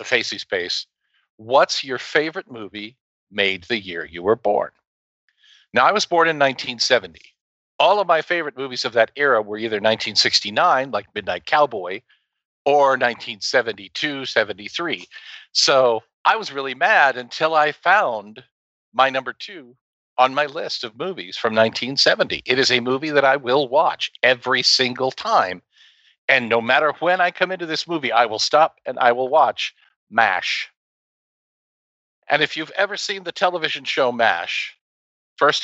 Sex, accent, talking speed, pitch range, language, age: male, American, 155 wpm, 115-150 Hz, English, 50-69